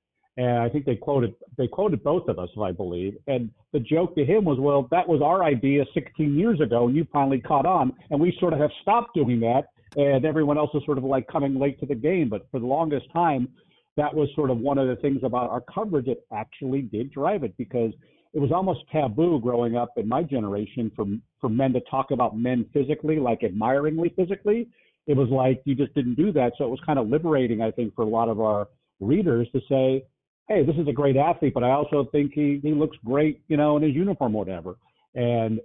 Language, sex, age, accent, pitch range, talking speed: English, male, 50-69, American, 120-150 Hz, 235 wpm